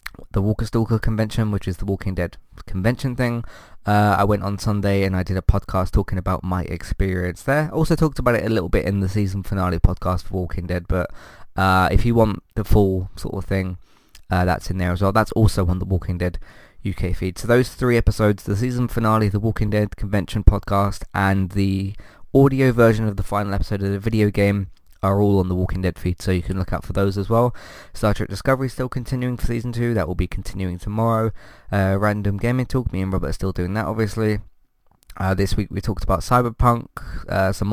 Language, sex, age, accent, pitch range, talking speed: English, male, 20-39, British, 95-115 Hz, 225 wpm